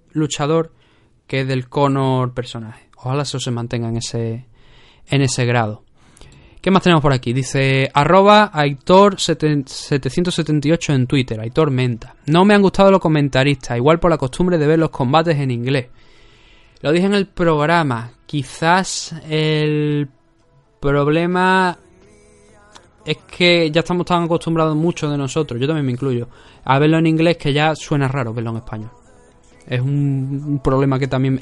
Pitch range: 130-175 Hz